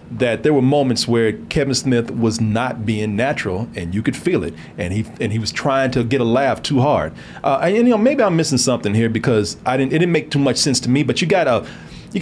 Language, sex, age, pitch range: English, male, 40-59, 115-145 Hz